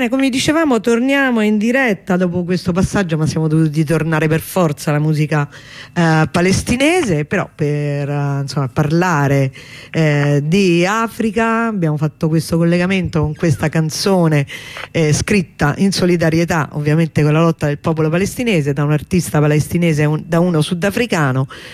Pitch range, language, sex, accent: 145-175 Hz, Italian, female, native